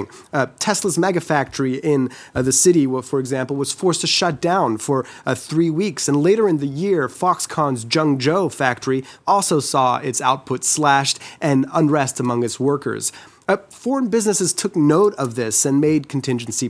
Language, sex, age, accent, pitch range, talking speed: English, male, 30-49, American, 130-175 Hz, 170 wpm